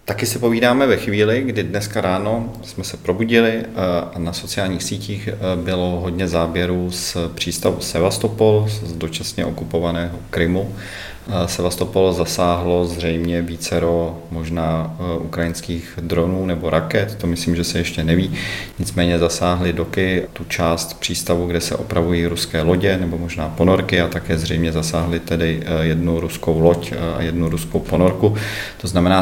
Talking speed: 140 wpm